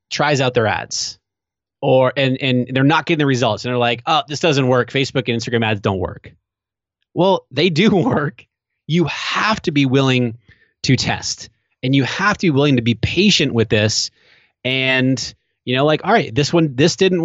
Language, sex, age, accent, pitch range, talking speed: English, male, 30-49, American, 115-145 Hz, 200 wpm